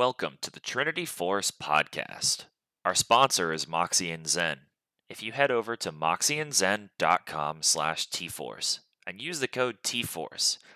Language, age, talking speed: English, 20-39, 135 wpm